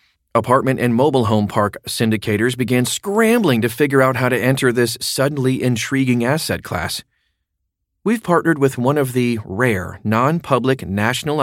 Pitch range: 105-130 Hz